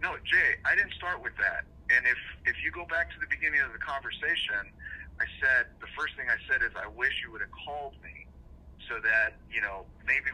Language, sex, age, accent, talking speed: English, male, 40-59, American, 225 wpm